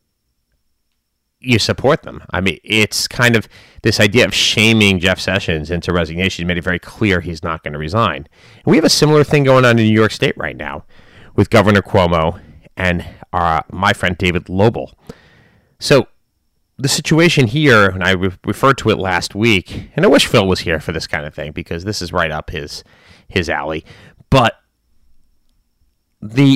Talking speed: 185 wpm